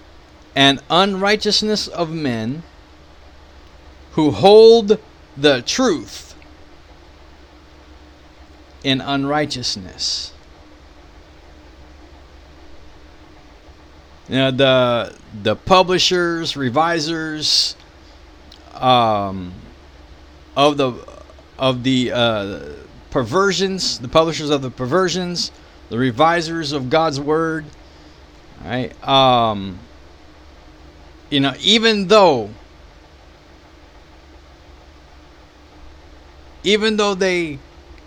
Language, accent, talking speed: English, American, 65 wpm